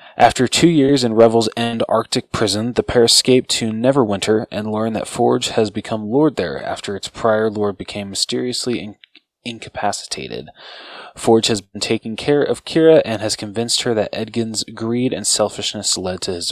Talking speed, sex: 175 wpm, male